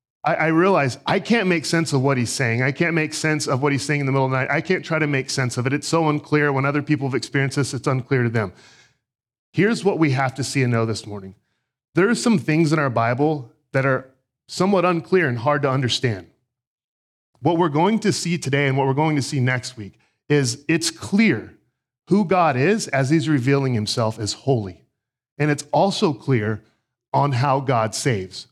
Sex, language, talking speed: male, English, 220 wpm